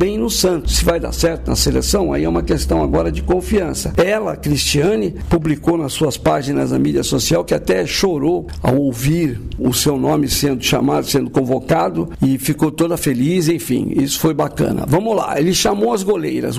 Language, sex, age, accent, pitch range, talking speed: Portuguese, male, 60-79, Brazilian, 150-205 Hz, 185 wpm